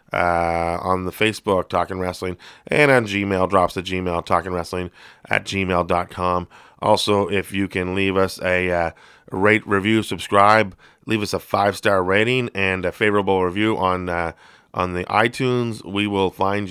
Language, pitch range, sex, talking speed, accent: English, 95-105 Hz, male, 160 wpm, American